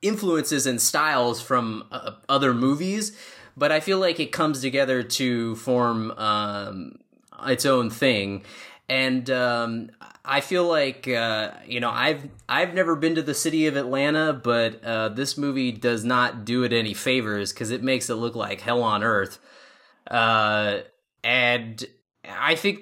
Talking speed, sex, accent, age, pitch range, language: 160 wpm, male, American, 20-39, 115-140 Hz, English